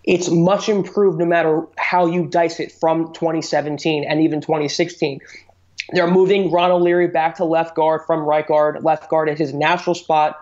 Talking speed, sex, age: 180 wpm, male, 20-39